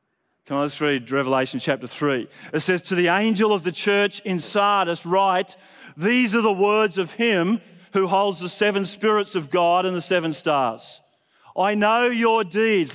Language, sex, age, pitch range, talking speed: English, male, 40-59, 180-215 Hz, 180 wpm